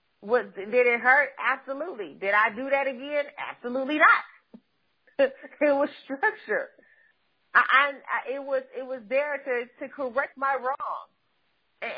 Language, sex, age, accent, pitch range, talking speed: English, female, 30-49, American, 235-285 Hz, 130 wpm